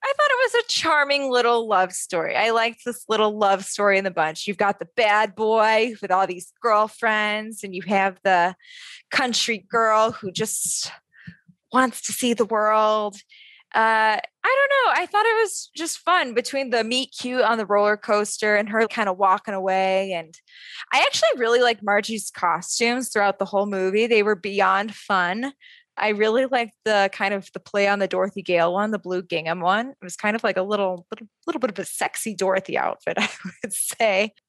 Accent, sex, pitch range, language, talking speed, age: American, female, 200-250 Hz, English, 200 wpm, 20-39